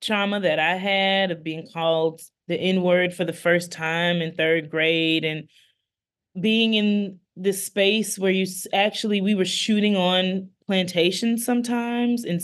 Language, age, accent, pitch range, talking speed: English, 20-39, American, 175-200 Hz, 150 wpm